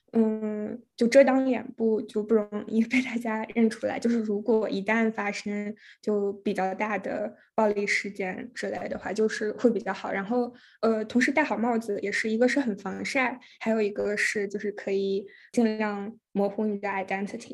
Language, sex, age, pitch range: Chinese, female, 10-29, 205-245 Hz